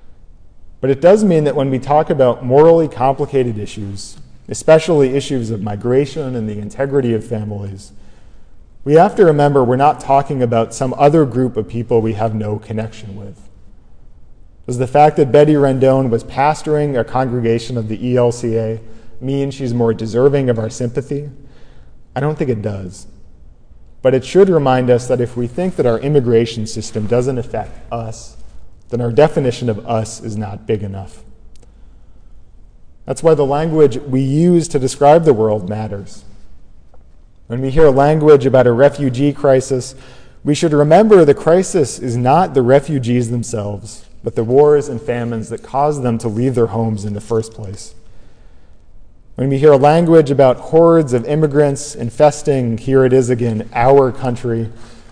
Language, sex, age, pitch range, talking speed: English, male, 40-59, 110-140 Hz, 165 wpm